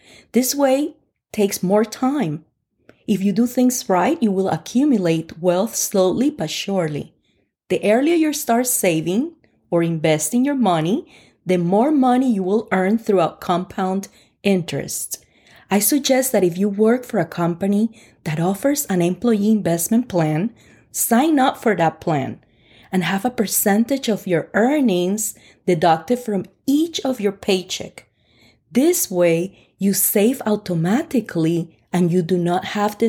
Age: 30-49